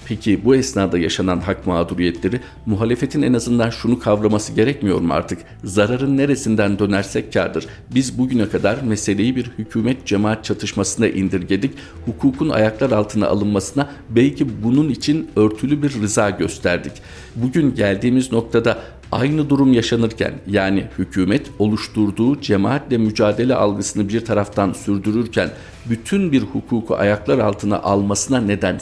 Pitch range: 100-120 Hz